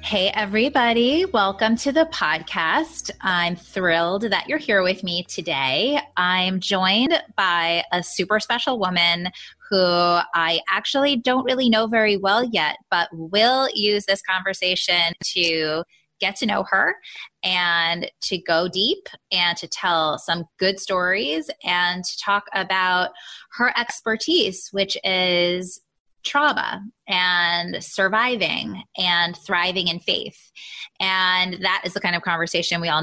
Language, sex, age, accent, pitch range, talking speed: English, female, 20-39, American, 175-230 Hz, 135 wpm